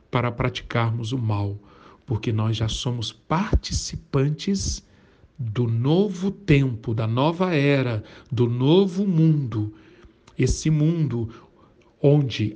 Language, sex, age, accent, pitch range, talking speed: Portuguese, male, 60-79, Brazilian, 115-160 Hz, 100 wpm